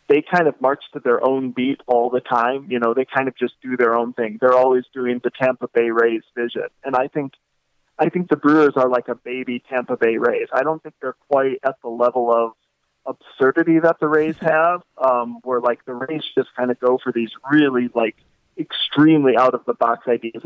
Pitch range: 120-150 Hz